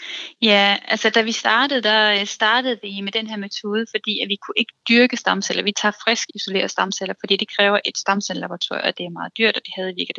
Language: Danish